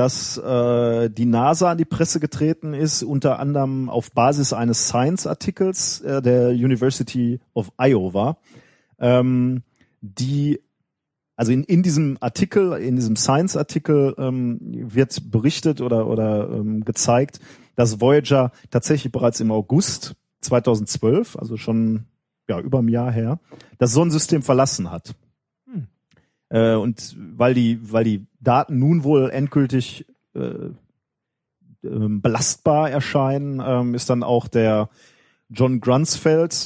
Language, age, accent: German, 40-59, German